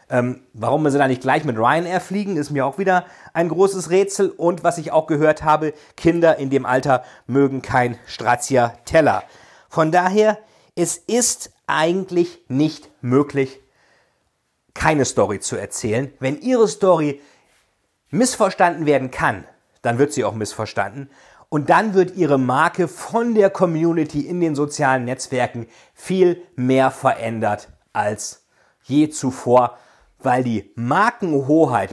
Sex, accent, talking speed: male, German, 140 wpm